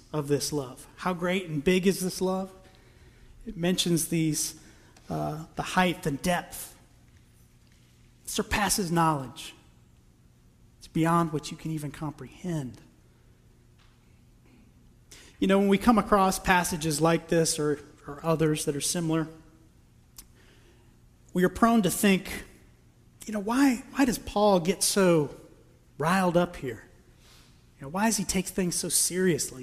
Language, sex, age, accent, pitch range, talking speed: English, male, 30-49, American, 130-180 Hz, 140 wpm